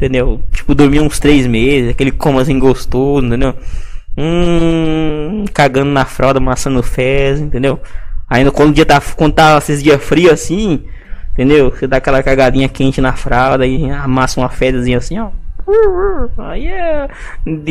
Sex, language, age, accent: male, Portuguese, 20-39, Brazilian